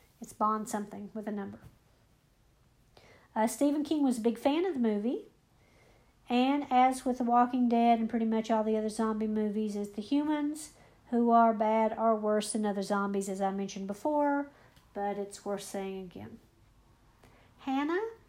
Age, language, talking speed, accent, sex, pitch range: 50-69, English, 165 wpm, American, female, 210-245 Hz